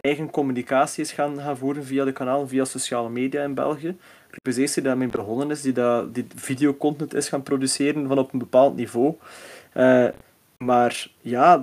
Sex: male